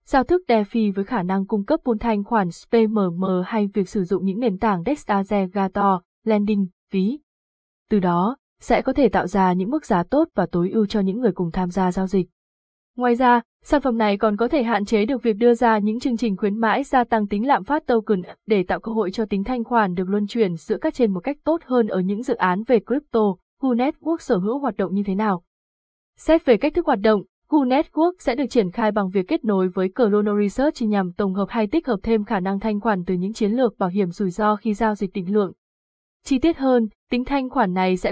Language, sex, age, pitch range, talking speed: Vietnamese, female, 20-39, 200-240 Hz, 240 wpm